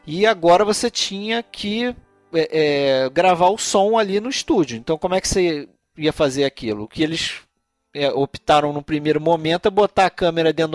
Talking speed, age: 175 wpm, 40-59